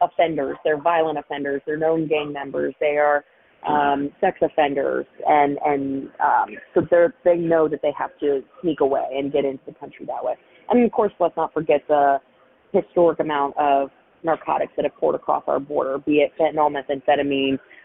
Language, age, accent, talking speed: English, 30-49, American, 170 wpm